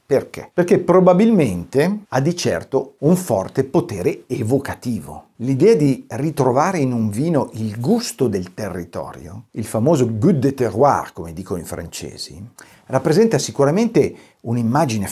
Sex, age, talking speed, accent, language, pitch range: male, 50-69, 125 wpm, native, Italian, 120-165 Hz